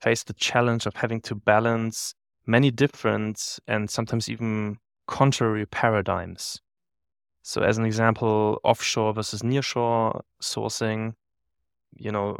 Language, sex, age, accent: English, male, 20-39, German